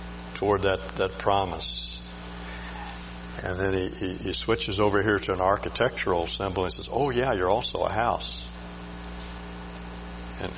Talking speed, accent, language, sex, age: 140 wpm, American, English, male, 60-79